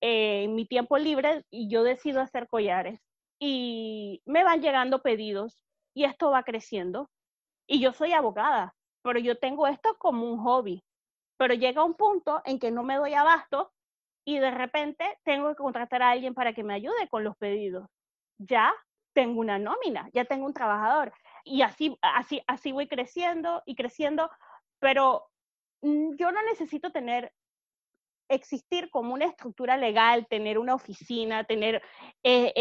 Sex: female